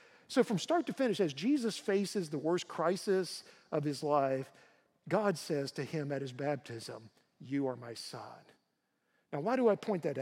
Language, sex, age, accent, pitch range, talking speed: English, male, 50-69, American, 145-200 Hz, 180 wpm